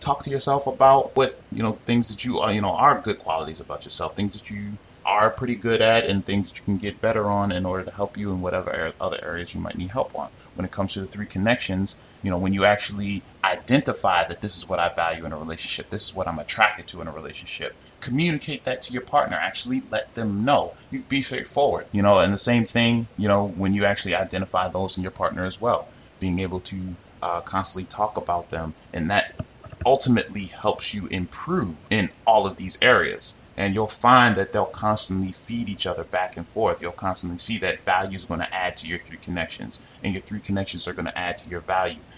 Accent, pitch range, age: American, 90-110 Hz, 20-39